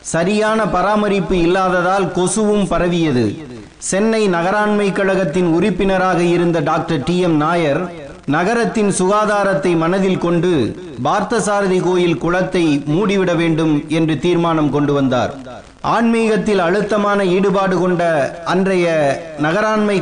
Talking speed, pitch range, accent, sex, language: 100 wpm, 160-195 Hz, native, male, Tamil